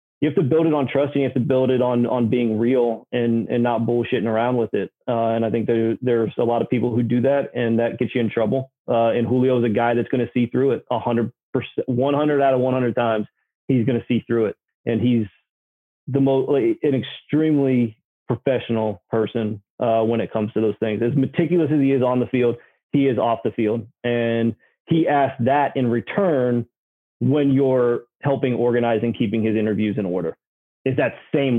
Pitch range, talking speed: 115-130 Hz, 220 wpm